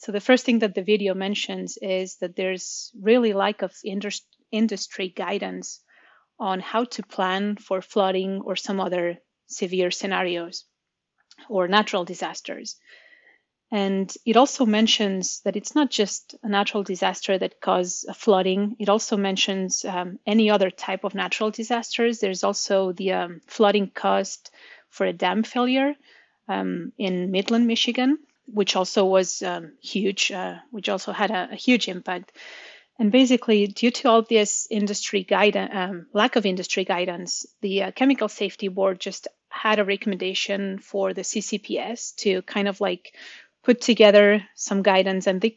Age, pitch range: 30-49, 190-225 Hz